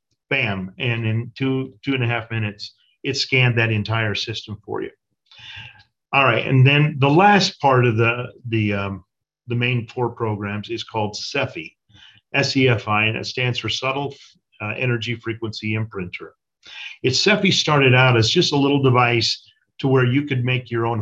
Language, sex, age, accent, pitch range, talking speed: English, male, 50-69, American, 110-135 Hz, 170 wpm